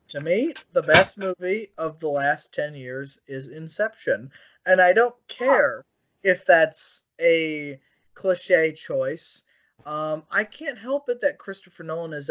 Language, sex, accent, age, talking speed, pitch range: English, male, American, 20-39, 145 wpm, 150-245 Hz